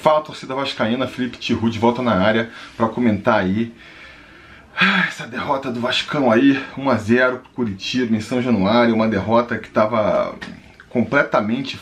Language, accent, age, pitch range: Portuguese, Brazilian, 20-39, 105-125 Hz